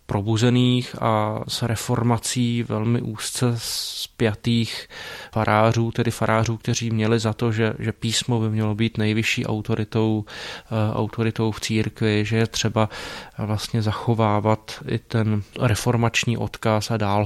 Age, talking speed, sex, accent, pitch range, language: 20-39, 125 wpm, male, native, 105-115 Hz, Czech